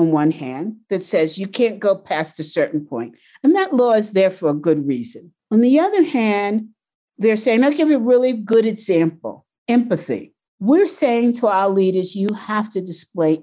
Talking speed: 195 wpm